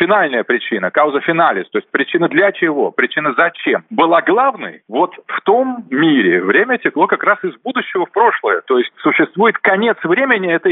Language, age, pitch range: Russian, 40-59, 160-255 Hz